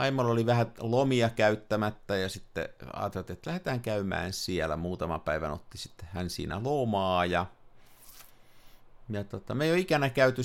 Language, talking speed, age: Finnish, 155 wpm, 50-69